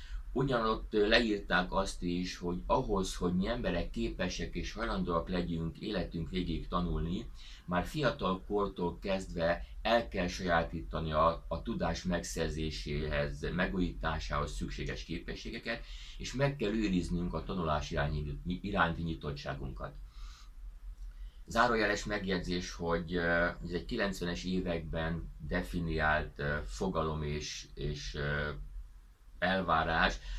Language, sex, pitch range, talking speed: Hungarian, male, 75-90 Hz, 100 wpm